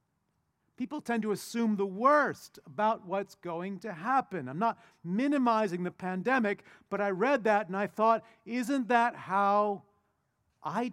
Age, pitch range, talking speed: 50-69, 175-240 Hz, 150 wpm